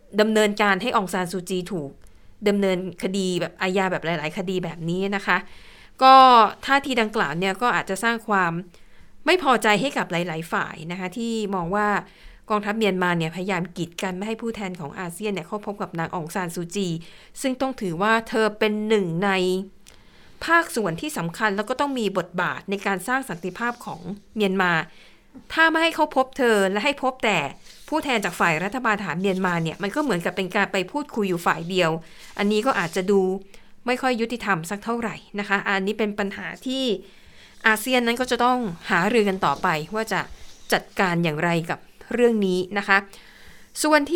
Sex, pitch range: female, 185-230 Hz